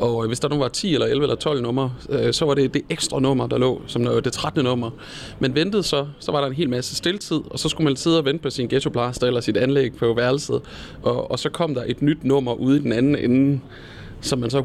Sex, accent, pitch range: male, native, 115-145 Hz